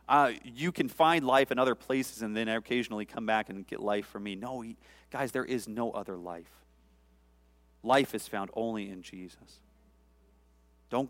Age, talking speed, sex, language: 40-59, 175 wpm, male, English